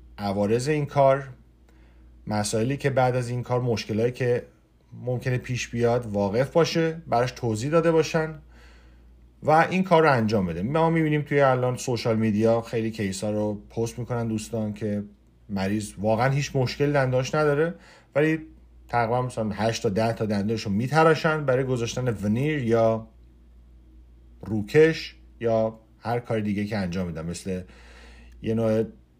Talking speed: 145 wpm